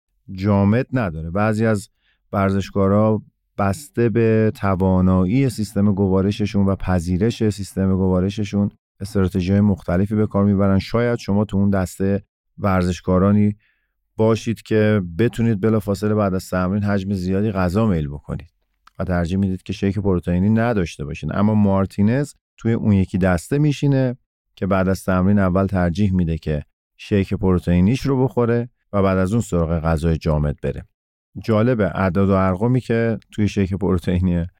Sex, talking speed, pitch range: male, 145 wpm, 90-105 Hz